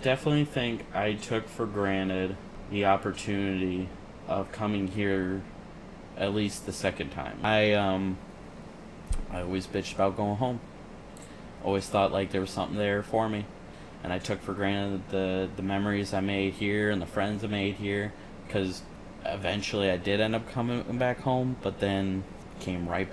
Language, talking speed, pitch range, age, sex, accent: English, 165 wpm, 95-105 Hz, 20-39, male, American